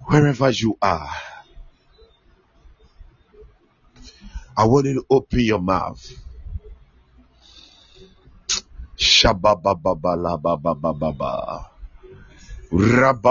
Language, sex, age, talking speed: English, male, 50-69, 60 wpm